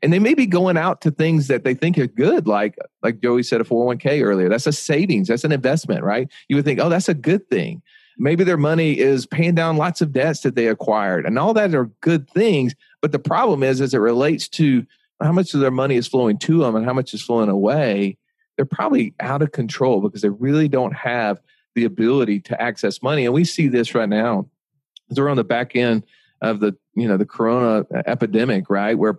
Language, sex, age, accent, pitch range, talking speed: English, male, 40-59, American, 115-155 Hz, 230 wpm